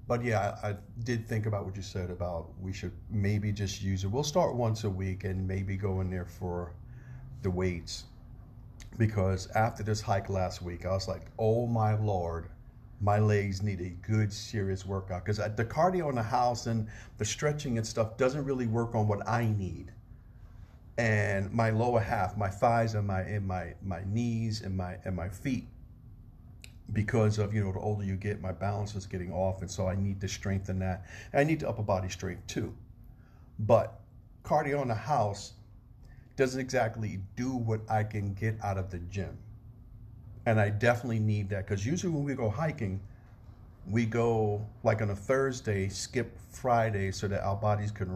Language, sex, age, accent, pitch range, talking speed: English, male, 50-69, American, 95-115 Hz, 190 wpm